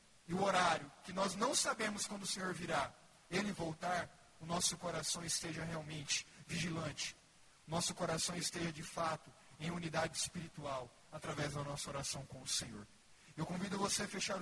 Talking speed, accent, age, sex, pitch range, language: 160 wpm, Brazilian, 50-69, male, 165-205 Hz, Portuguese